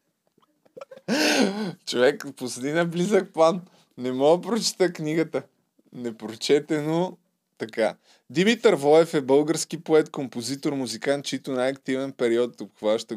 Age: 20-39